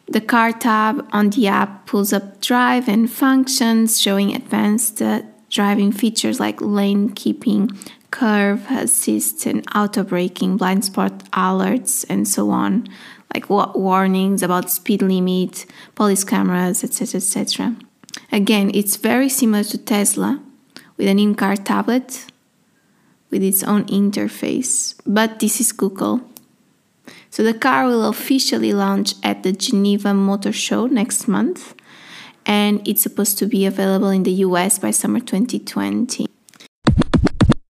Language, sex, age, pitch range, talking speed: English, female, 20-39, 195-240 Hz, 130 wpm